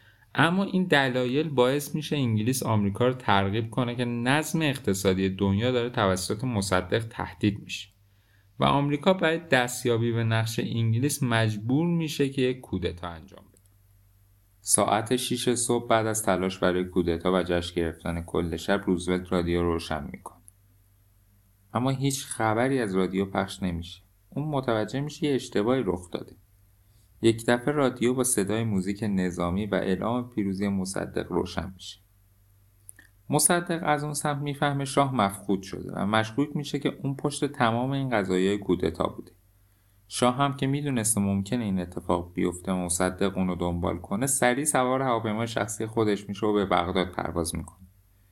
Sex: male